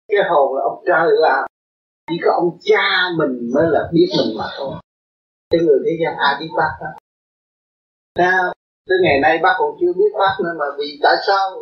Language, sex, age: Vietnamese, male, 20-39